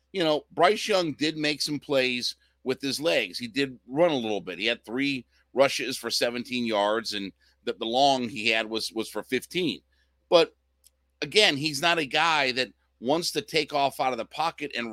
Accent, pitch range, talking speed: American, 120-155 Hz, 200 wpm